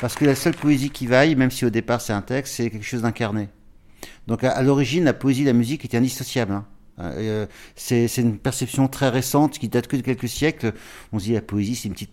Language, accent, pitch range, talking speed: French, French, 105-135 Hz, 250 wpm